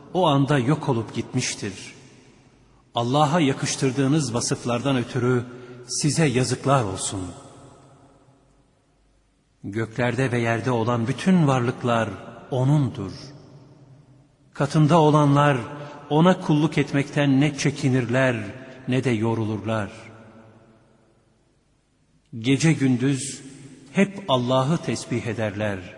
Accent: native